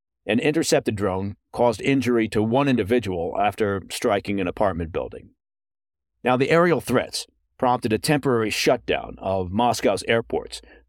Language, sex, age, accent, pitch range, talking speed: English, male, 50-69, American, 100-130 Hz, 130 wpm